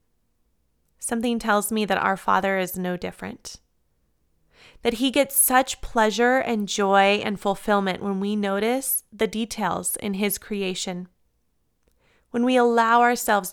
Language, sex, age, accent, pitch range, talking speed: English, female, 20-39, American, 195-235 Hz, 135 wpm